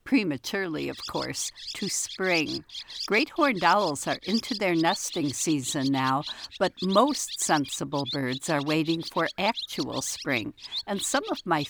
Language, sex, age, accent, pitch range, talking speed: English, female, 60-79, American, 150-215 Hz, 140 wpm